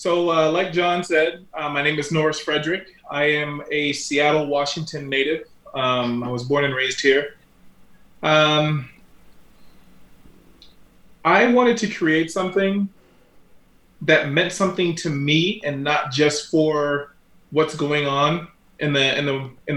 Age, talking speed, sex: 30-49, 145 wpm, male